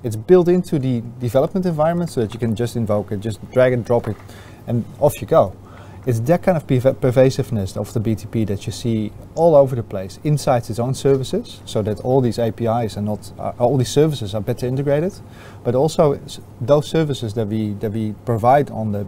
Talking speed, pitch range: 200 wpm, 105-130 Hz